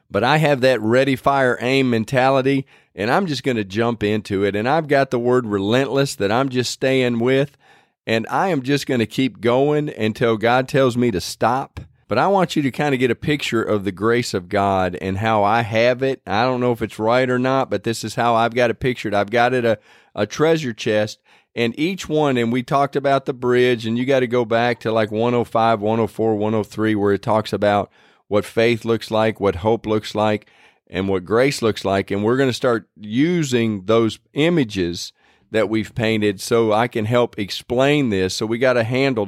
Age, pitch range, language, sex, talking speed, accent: 40-59, 105-130 Hz, English, male, 220 wpm, American